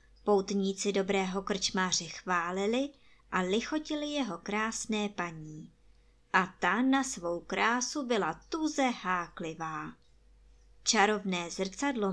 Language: Czech